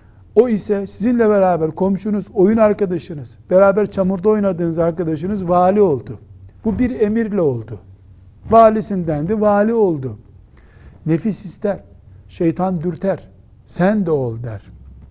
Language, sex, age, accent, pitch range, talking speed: Turkish, male, 60-79, native, 135-190 Hz, 110 wpm